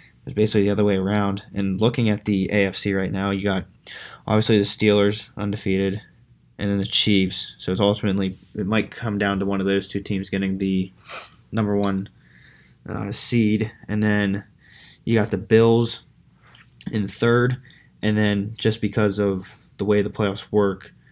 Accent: American